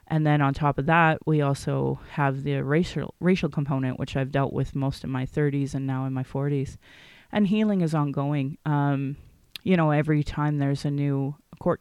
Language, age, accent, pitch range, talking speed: English, 30-49, American, 140-160 Hz, 200 wpm